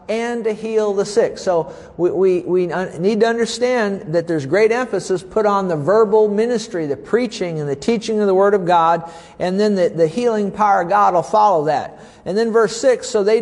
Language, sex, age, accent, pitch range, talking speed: English, male, 50-69, American, 180-220 Hz, 215 wpm